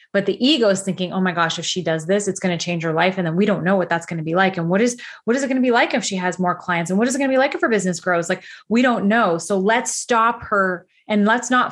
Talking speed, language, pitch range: 345 wpm, English, 185-250 Hz